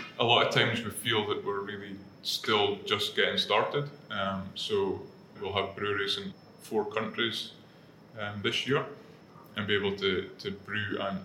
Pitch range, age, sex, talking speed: 100-145 Hz, 20-39, male, 165 wpm